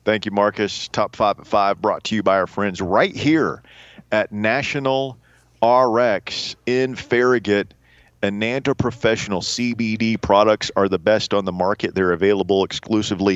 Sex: male